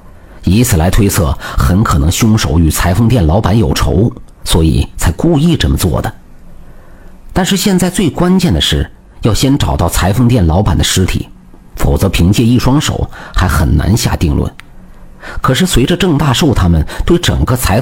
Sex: male